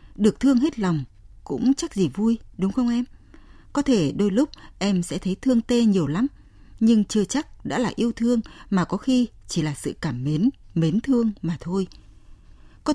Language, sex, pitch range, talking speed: Vietnamese, female, 155-230 Hz, 195 wpm